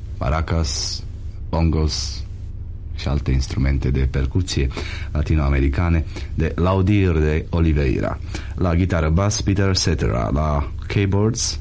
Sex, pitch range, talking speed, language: male, 75-95 Hz, 100 wpm, Romanian